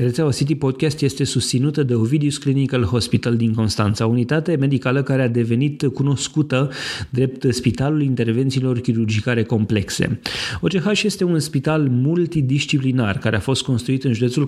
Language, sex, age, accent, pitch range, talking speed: Romanian, male, 30-49, native, 115-135 Hz, 140 wpm